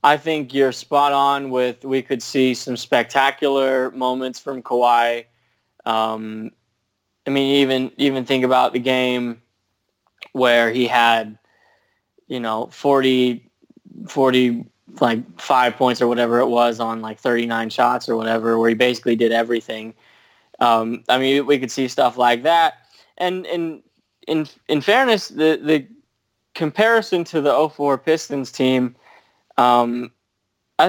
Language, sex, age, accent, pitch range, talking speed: English, male, 20-39, American, 120-145 Hz, 140 wpm